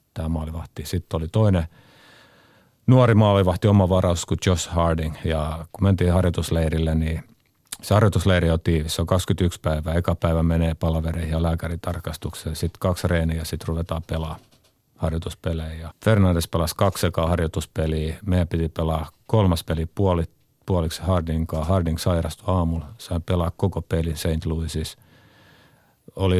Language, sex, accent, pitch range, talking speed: Finnish, male, native, 80-95 Hz, 140 wpm